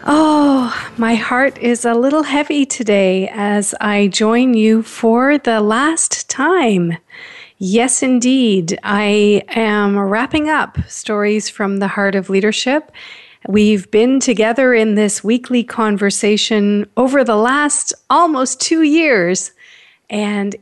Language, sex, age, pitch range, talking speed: English, female, 40-59, 195-245 Hz, 120 wpm